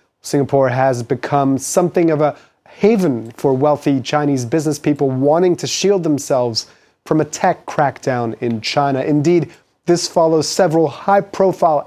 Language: English